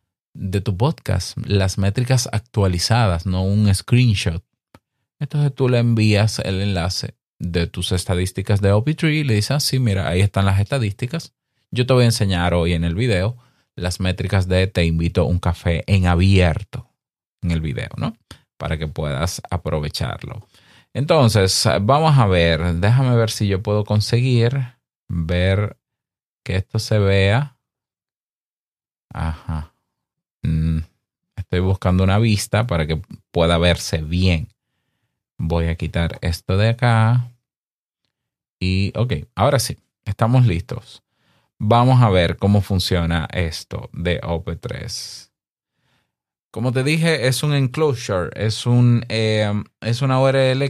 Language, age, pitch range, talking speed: Spanish, 30-49, 90-120 Hz, 130 wpm